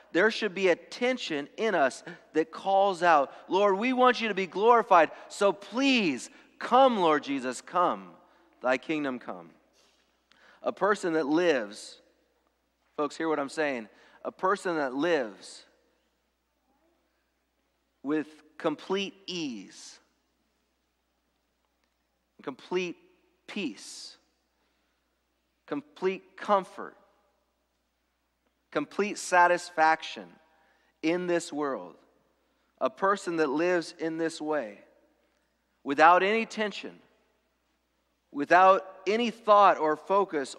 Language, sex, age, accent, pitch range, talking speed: English, male, 40-59, American, 150-205 Hz, 100 wpm